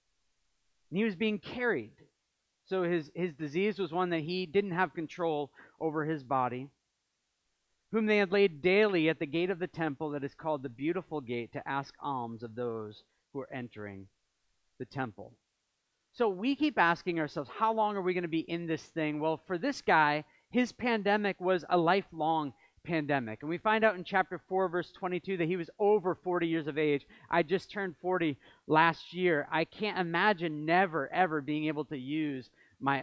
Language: English